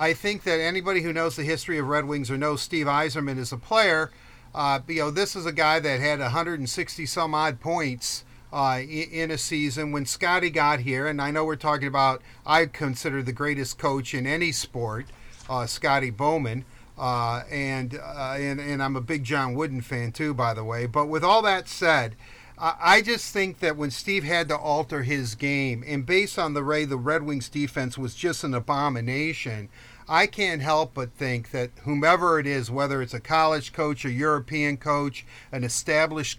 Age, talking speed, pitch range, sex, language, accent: 50-69, 195 wpm, 125-155 Hz, male, English, American